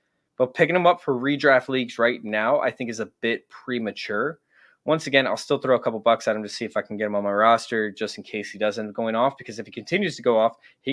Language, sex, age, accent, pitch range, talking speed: English, male, 20-39, American, 115-140 Hz, 275 wpm